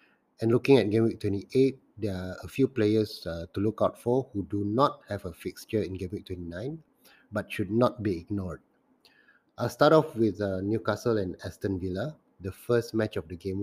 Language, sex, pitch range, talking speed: English, male, 100-125 Hz, 210 wpm